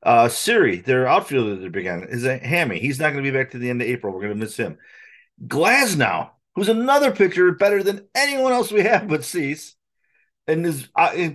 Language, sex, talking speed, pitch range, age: English, male, 205 wpm, 120-155 Hz, 40-59